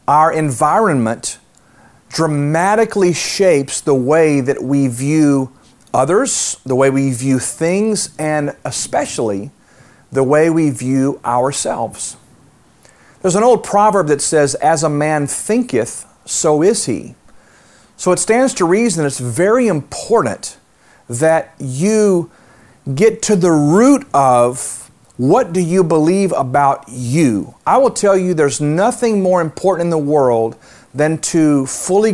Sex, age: male, 40-59